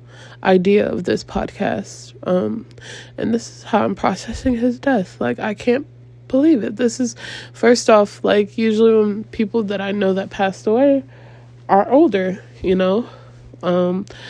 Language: English